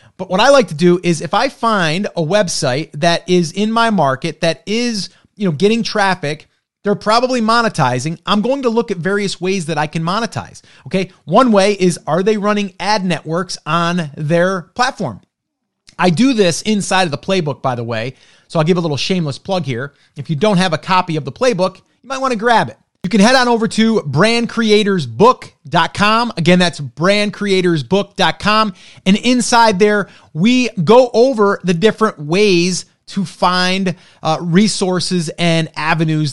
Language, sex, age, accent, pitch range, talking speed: English, male, 30-49, American, 155-210 Hz, 175 wpm